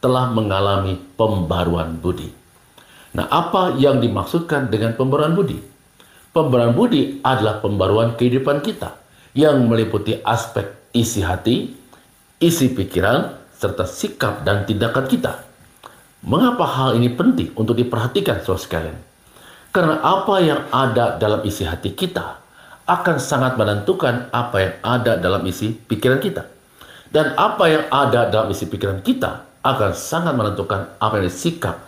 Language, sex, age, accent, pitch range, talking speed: Indonesian, male, 50-69, native, 95-130 Hz, 130 wpm